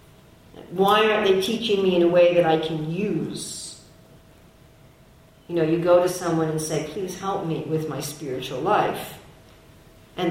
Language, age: English, 50-69